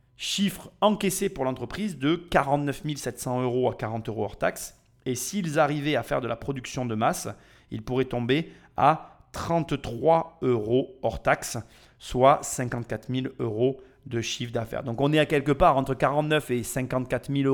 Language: French